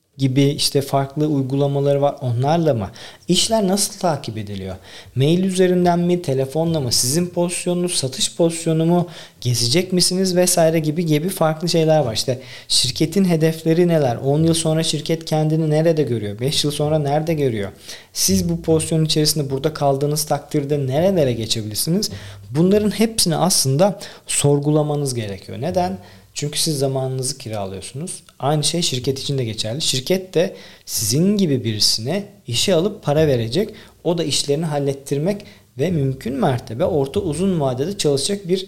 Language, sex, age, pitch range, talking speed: Turkish, male, 40-59, 130-165 Hz, 140 wpm